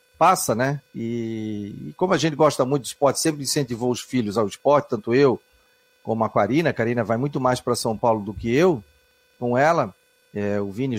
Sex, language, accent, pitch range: male, Portuguese, Brazilian, 120-175 Hz